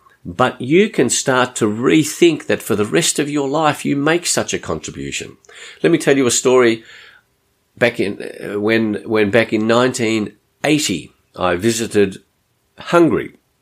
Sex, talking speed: male, 150 wpm